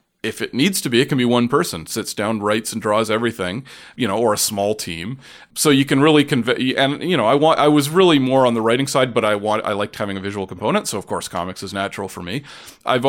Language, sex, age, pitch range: English, male, 40-59, 105-130 Hz